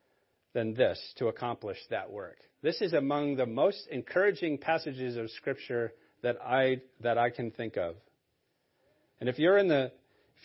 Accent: American